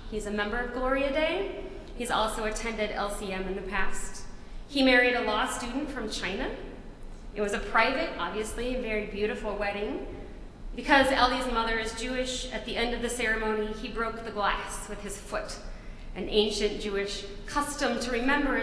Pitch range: 195-235 Hz